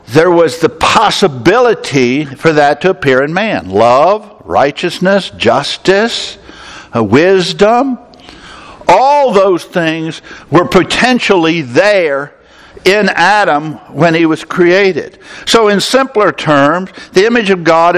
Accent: American